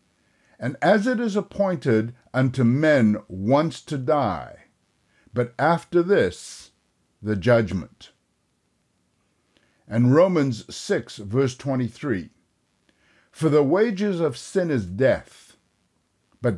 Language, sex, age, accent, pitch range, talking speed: English, male, 60-79, American, 110-160 Hz, 100 wpm